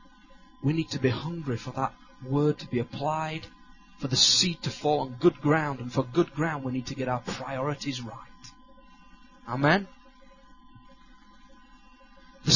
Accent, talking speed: British, 155 wpm